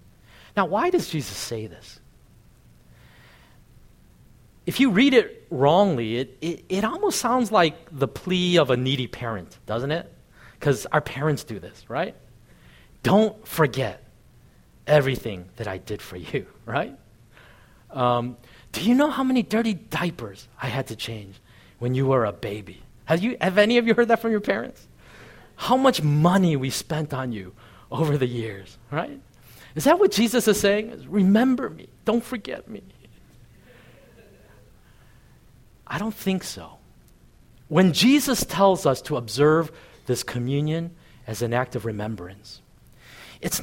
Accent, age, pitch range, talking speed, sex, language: American, 30-49, 115-185 Hz, 150 wpm, male, English